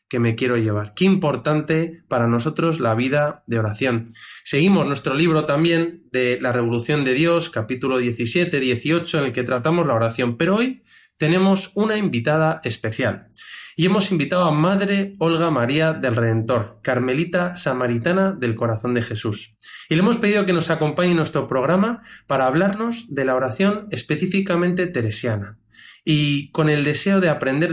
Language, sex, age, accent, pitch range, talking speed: Spanish, male, 30-49, Spanish, 125-170 Hz, 160 wpm